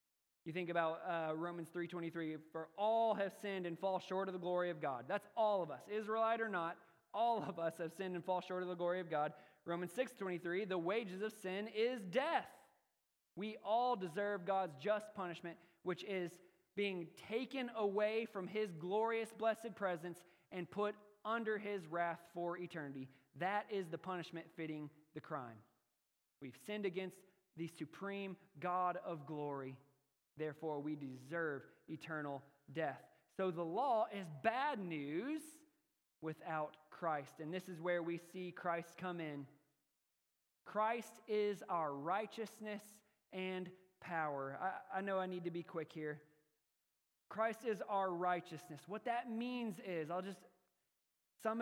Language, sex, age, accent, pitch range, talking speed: English, male, 20-39, American, 165-215 Hz, 155 wpm